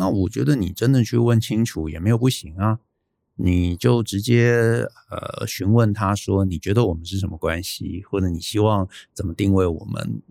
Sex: male